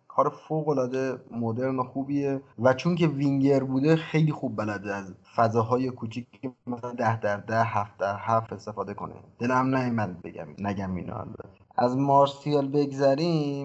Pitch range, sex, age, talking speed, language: 110-135 Hz, male, 20-39, 145 wpm, Persian